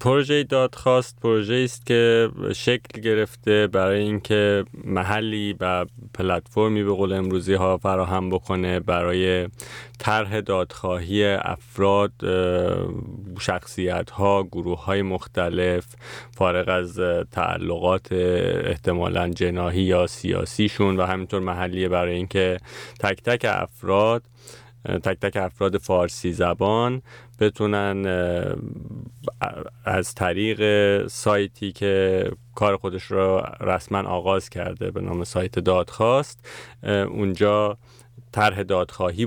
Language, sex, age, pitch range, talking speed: English, male, 30-49, 90-110 Hz, 95 wpm